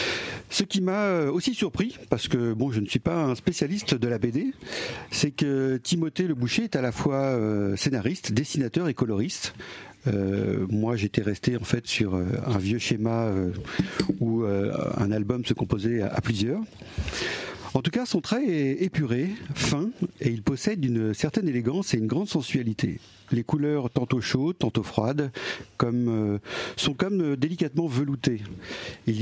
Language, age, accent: French, 50-69, French